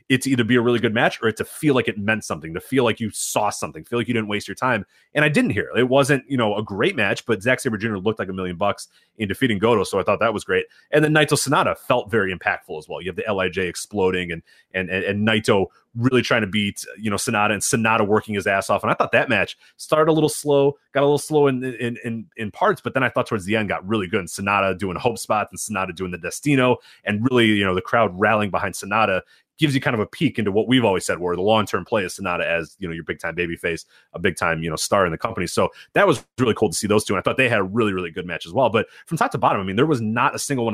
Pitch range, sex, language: 100-130 Hz, male, English